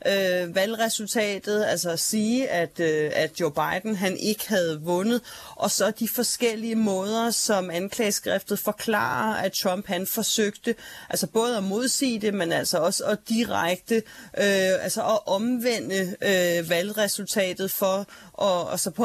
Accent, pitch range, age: native, 185-220 Hz, 30-49